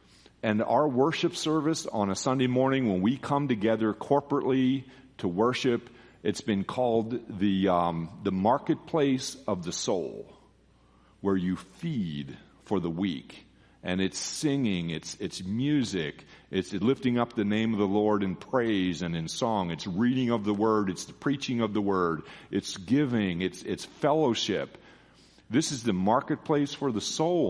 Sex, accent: male, American